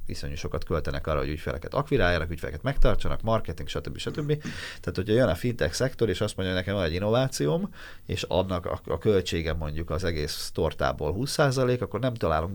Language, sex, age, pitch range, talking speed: Hungarian, male, 30-49, 80-100 Hz, 190 wpm